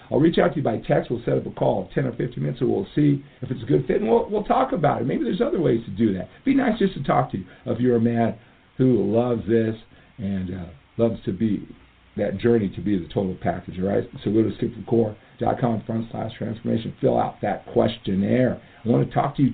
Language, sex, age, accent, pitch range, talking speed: English, male, 50-69, American, 100-125 Hz, 250 wpm